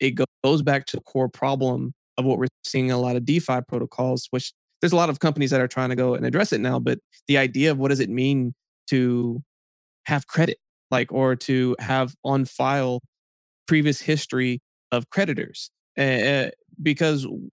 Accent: American